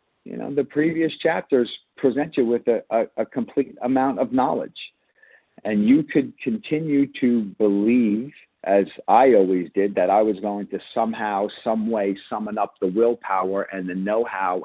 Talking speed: 160 wpm